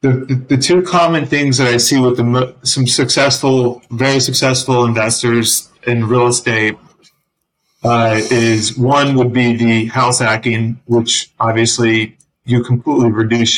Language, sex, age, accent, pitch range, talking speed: English, male, 30-49, American, 115-130 Hz, 135 wpm